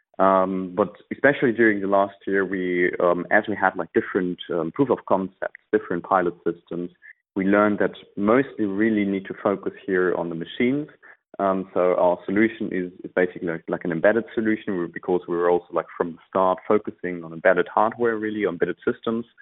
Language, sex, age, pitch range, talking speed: English, male, 30-49, 90-105 Hz, 175 wpm